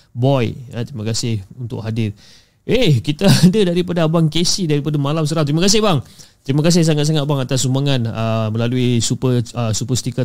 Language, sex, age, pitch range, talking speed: Malay, male, 30-49, 115-150 Hz, 160 wpm